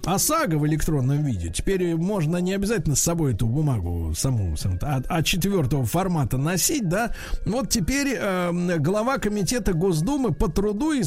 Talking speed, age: 155 wpm, 50-69